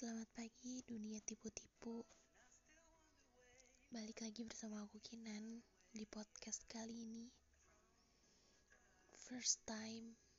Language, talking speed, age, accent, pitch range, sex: Indonesian, 85 wpm, 20-39, native, 215-250 Hz, female